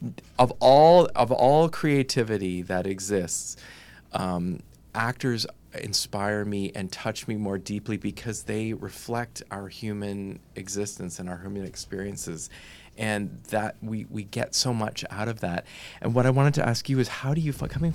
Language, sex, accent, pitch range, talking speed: English, male, American, 95-125 Hz, 165 wpm